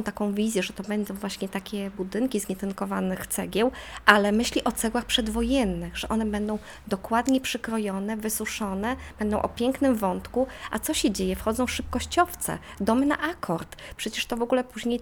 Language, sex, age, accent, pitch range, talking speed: Polish, female, 20-39, native, 200-250 Hz, 160 wpm